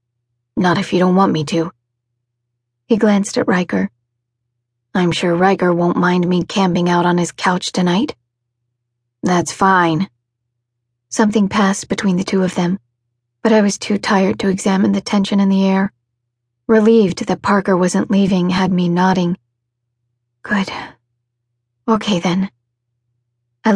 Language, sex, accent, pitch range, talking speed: English, female, American, 120-200 Hz, 140 wpm